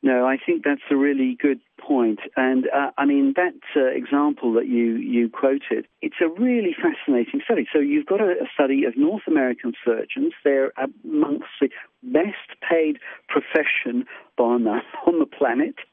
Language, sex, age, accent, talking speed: English, male, 50-69, British, 165 wpm